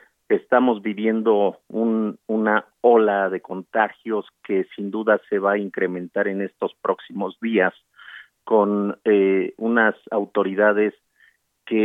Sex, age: male, 50-69